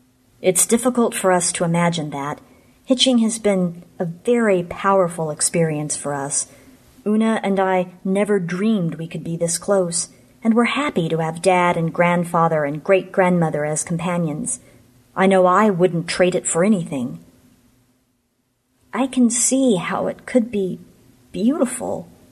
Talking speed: 145 wpm